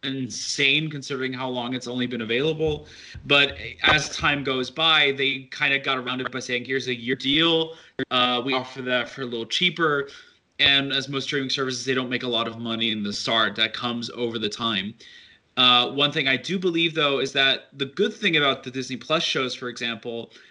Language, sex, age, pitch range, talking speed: English, male, 20-39, 125-145 Hz, 210 wpm